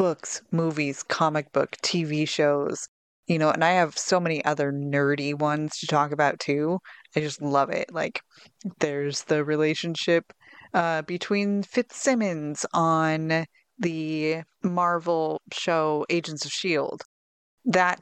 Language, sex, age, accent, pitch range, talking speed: English, female, 20-39, American, 150-185 Hz, 130 wpm